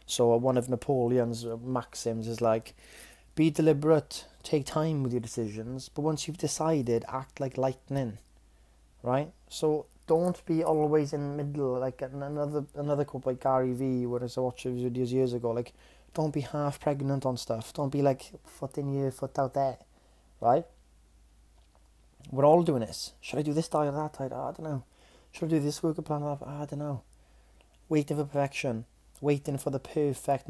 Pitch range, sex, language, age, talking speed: 115-140 Hz, male, English, 20-39, 185 wpm